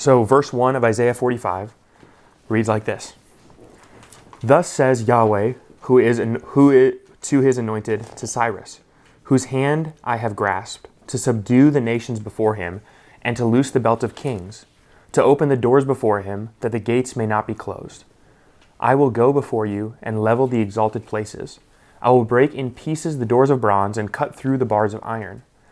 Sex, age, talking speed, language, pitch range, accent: male, 20-39, 185 wpm, English, 105-125 Hz, American